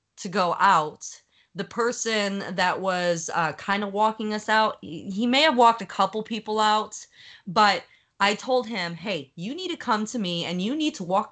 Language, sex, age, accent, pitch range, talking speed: English, female, 20-39, American, 175-230 Hz, 195 wpm